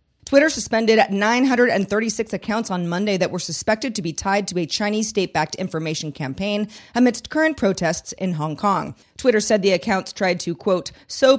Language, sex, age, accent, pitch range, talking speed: English, female, 40-59, American, 175-220 Hz, 170 wpm